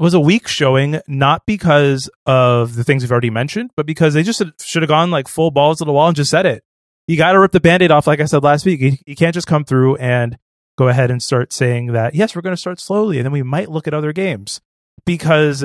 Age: 20-39